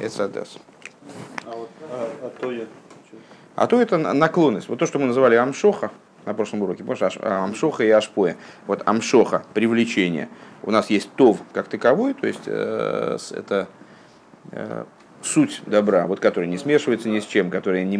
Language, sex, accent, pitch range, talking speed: Russian, male, native, 110-170 Hz, 135 wpm